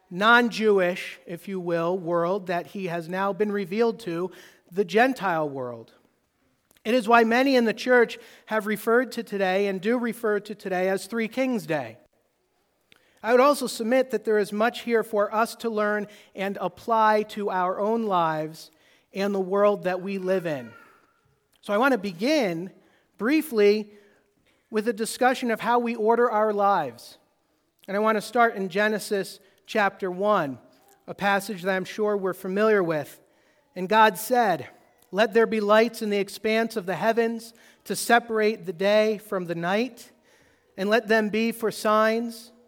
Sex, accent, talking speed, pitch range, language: male, American, 165 wpm, 190-230 Hz, English